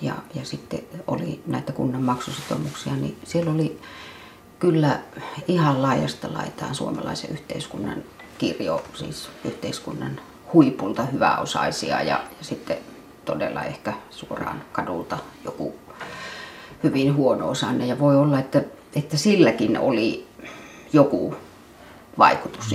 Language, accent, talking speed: Finnish, native, 110 wpm